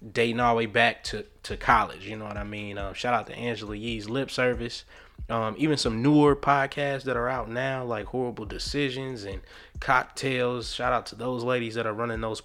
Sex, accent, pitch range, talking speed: male, American, 110-130 Hz, 210 wpm